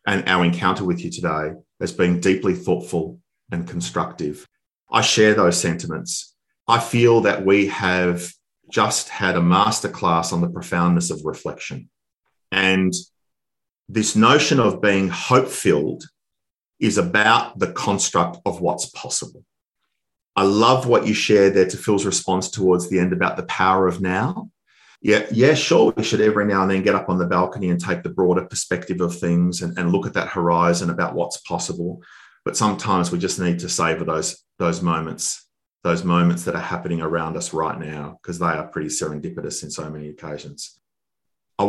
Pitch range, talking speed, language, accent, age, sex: 85-95 Hz, 170 wpm, English, Australian, 40-59, male